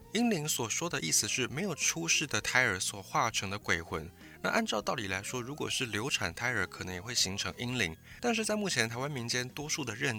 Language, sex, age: Chinese, male, 20-39